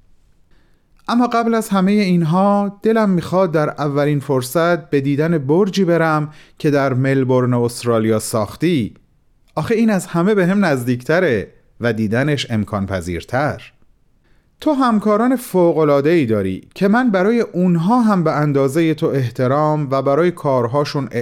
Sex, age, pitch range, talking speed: male, 30-49, 120-175 Hz, 130 wpm